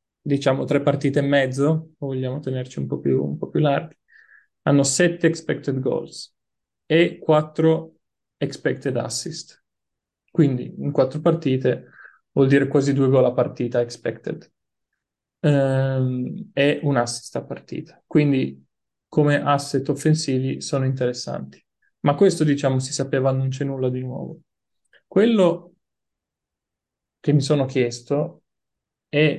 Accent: native